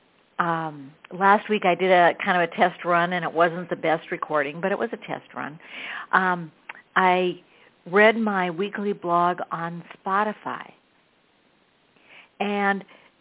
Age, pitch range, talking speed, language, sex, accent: 60-79, 165-190 Hz, 145 wpm, English, female, American